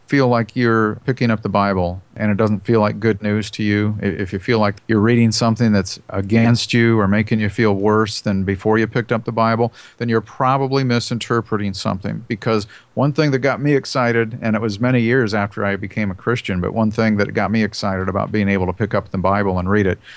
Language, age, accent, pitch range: English, 50-69, American, 100-120 Hz